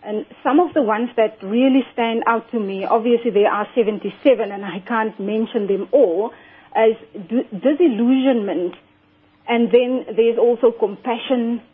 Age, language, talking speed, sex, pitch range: 40-59, English, 145 wpm, female, 210-250 Hz